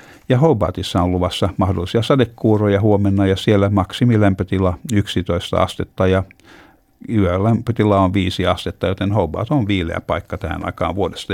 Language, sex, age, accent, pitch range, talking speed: Finnish, male, 60-79, native, 90-105 Hz, 125 wpm